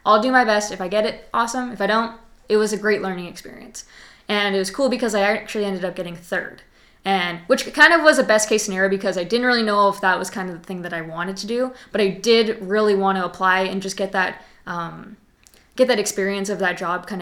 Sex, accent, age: female, American, 20-39